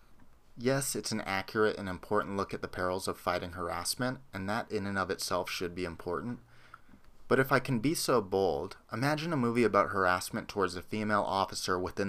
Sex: male